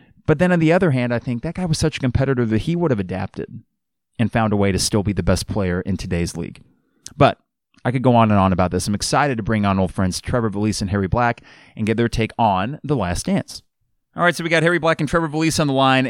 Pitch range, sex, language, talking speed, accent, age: 105-145 Hz, male, English, 275 wpm, American, 30-49